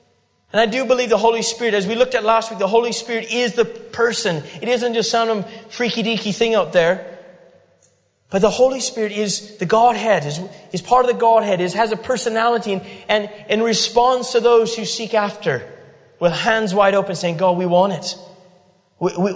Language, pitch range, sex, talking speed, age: English, 180-225 Hz, male, 200 wpm, 30-49